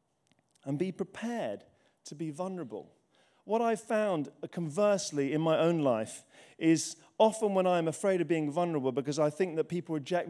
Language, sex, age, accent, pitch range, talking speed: English, male, 40-59, British, 140-175 Hz, 165 wpm